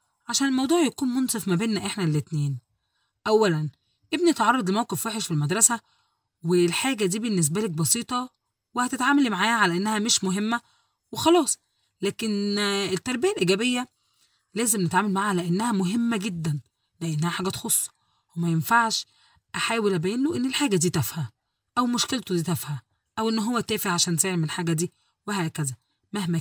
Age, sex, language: 20-39, female, Arabic